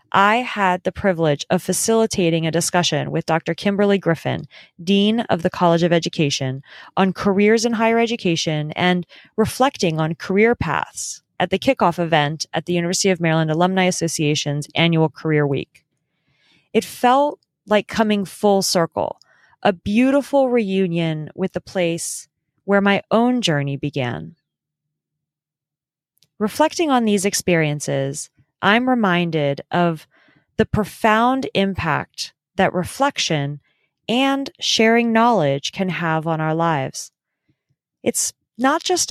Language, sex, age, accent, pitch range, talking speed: English, female, 30-49, American, 160-225 Hz, 125 wpm